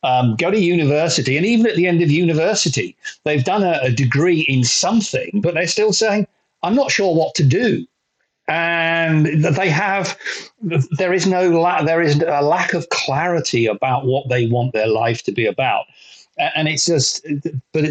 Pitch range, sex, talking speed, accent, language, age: 135-175 Hz, male, 180 wpm, British, English, 50-69